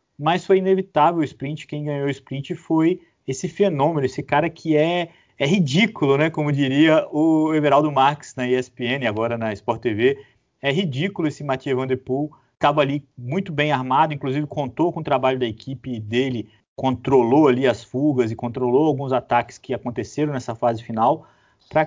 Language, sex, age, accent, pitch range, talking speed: Portuguese, male, 30-49, Brazilian, 130-175 Hz, 175 wpm